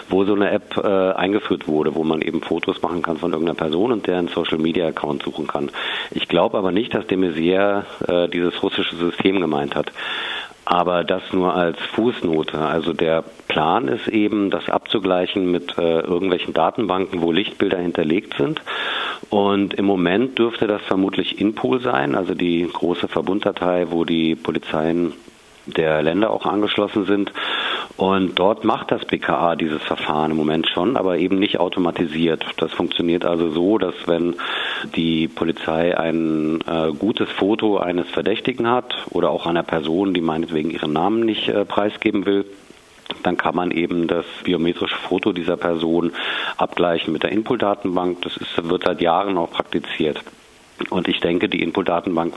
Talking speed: 160 wpm